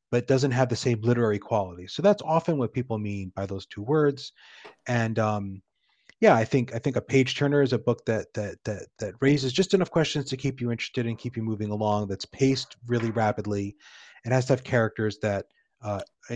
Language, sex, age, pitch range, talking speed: English, male, 30-49, 110-135 Hz, 215 wpm